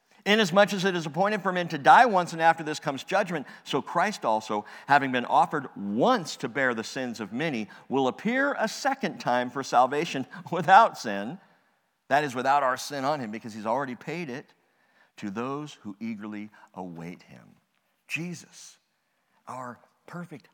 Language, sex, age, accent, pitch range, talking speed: English, male, 50-69, American, 120-175 Hz, 170 wpm